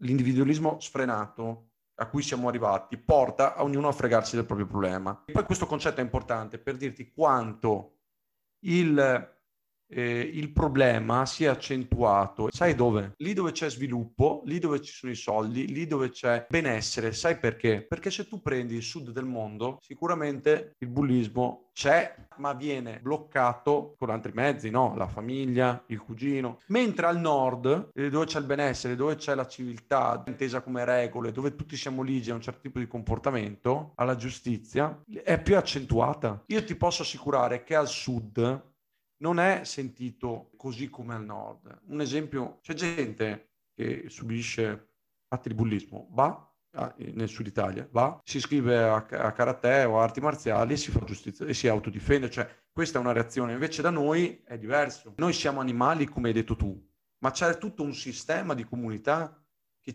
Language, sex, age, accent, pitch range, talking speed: Italian, male, 40-59, native, 115-150 Hz, 165 wpm